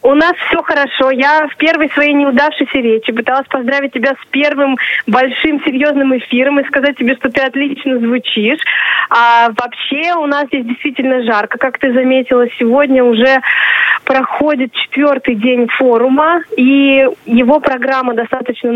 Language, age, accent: Russian, 20-39, native